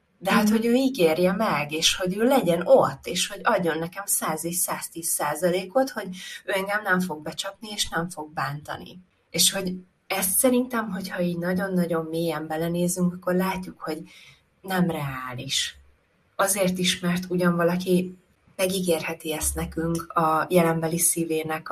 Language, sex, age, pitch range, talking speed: Hungarian, female, 20-39, 155-185 Hz, 145 wpm